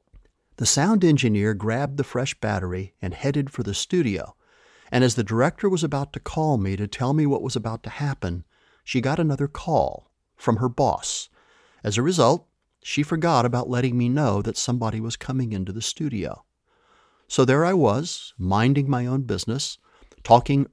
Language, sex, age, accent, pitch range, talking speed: English, male, 50-69, American, 105-135 Hz, 175 wpm